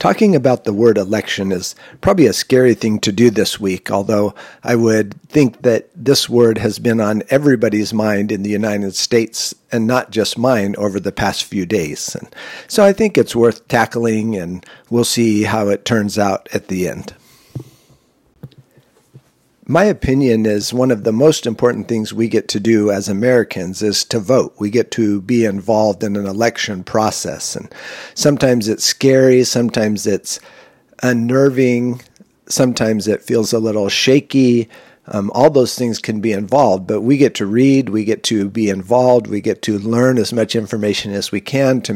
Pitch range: 105-125 Hz